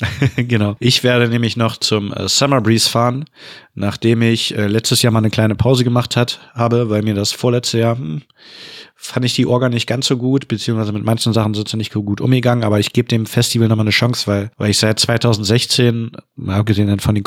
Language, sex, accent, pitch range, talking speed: German, male, German, 105-120 Hz, 215 wpm